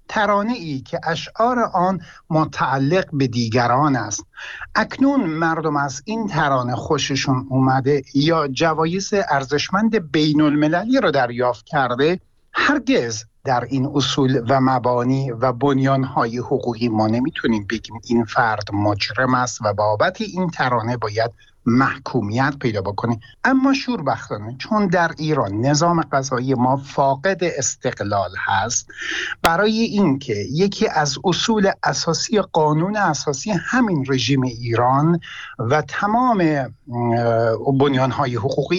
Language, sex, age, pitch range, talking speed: Persian, male, 60-79, 130-190 Hz, 115 wpm